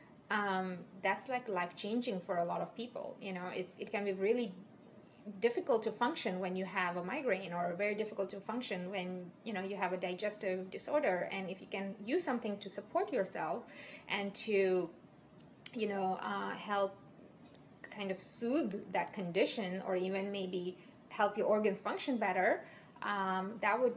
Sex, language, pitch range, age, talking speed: female, English, 180-210 Hz, 20-39, 175 wpm